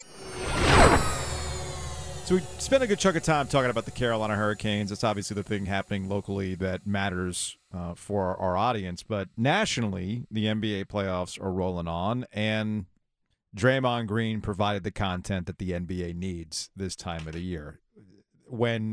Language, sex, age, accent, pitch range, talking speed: English, male, 40-59, American, 95-120 Hz, 155 wpm